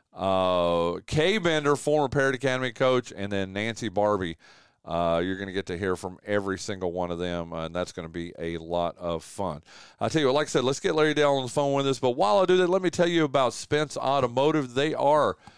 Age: 40-59